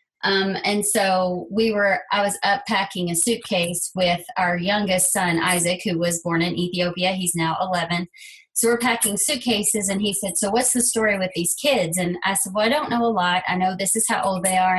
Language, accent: English, American